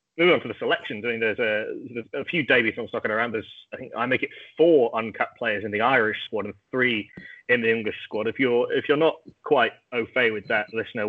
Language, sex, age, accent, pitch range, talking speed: English, male, 20-39, British, 110-145 Hz, 255 wpm